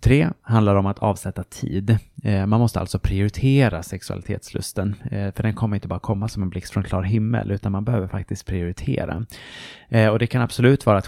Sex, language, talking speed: male, Swedish, 195 wpm